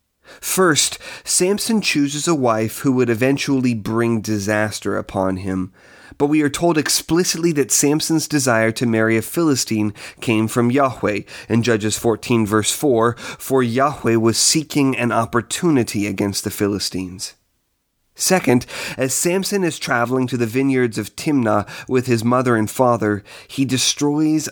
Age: 30-49